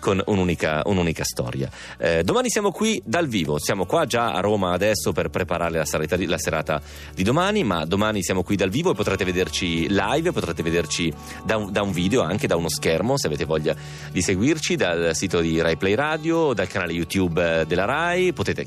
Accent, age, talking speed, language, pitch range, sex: native, 30-49, 200 wpm, Italian, 80-105 Hz, male